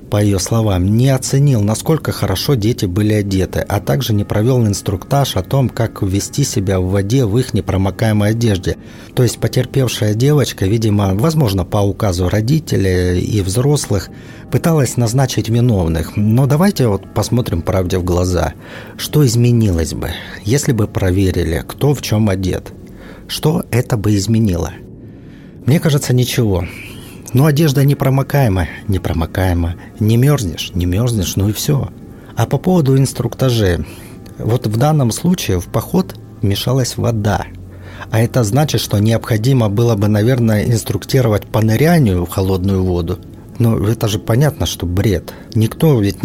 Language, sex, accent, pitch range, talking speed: Russian, male, native, 95-125 Hz, 140 wpm